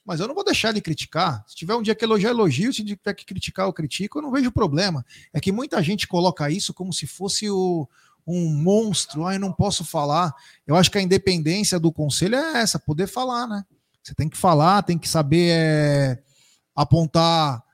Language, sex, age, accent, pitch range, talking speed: Portuguese, male, 40-59, Brazilian, 150-200 Hz, 205 wpm